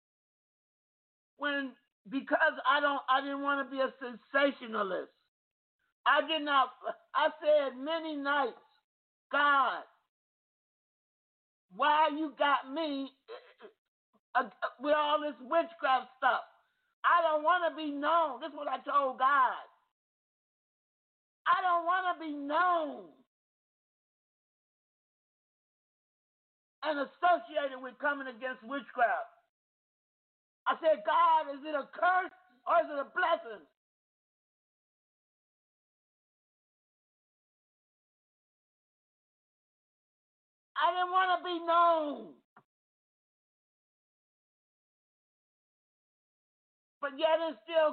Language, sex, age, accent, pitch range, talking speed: English, male, 50-69, American, 280-335 Hz, 95 wpm